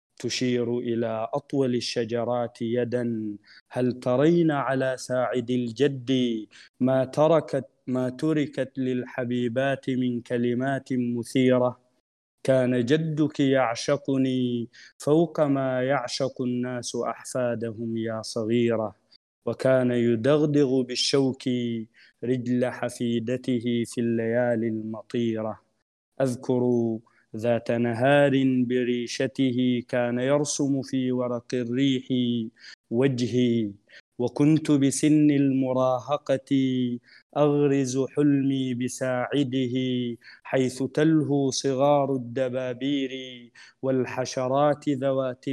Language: Arabic